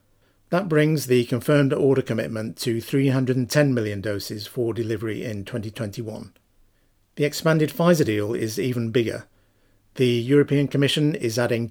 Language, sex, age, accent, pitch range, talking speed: English, male, 50-69, British, 110-140 Hz, 135 wpm